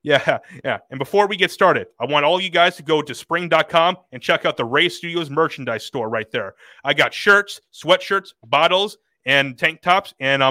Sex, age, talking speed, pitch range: male, 30-49, 205 wpm, 135-165 Hz